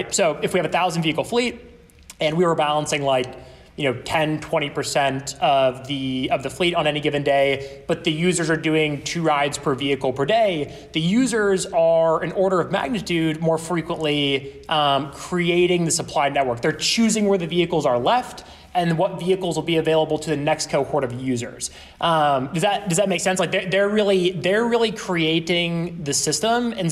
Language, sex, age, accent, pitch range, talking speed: English, male, 20-39, American, 140-180 Hz, 195 wpm